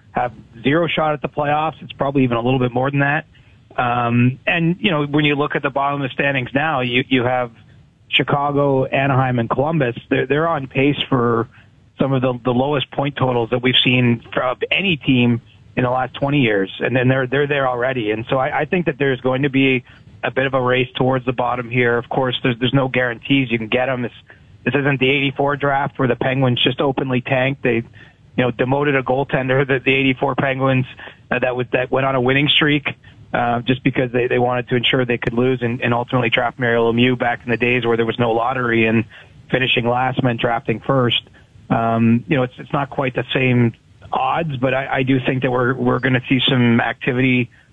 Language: English